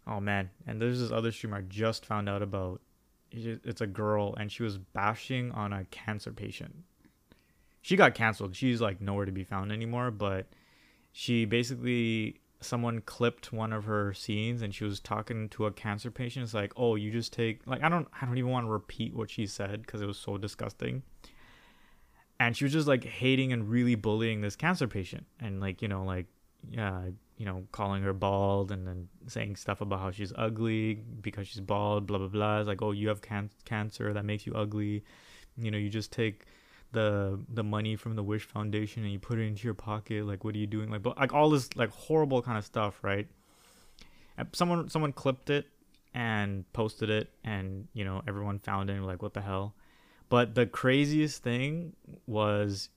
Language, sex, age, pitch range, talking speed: English, male, 20-39, 100-120 Hz, 200 wpm